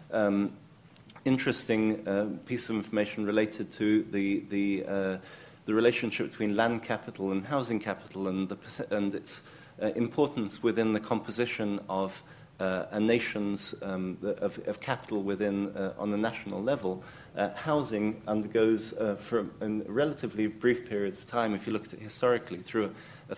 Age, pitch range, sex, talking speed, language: 30-49, 105-125 Hz, male, 160 wpm, English